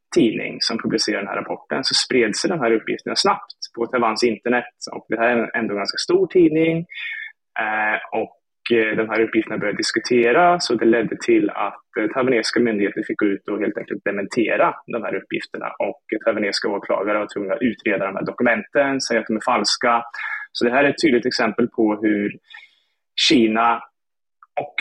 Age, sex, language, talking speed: 20-39, male, Swedish, 180 wpm